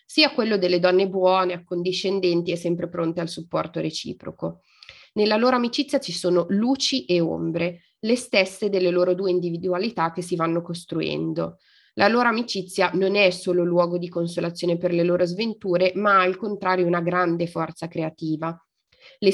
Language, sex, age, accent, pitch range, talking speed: Italian, female, 20-39, native, 170-200 Hz, 160 wpm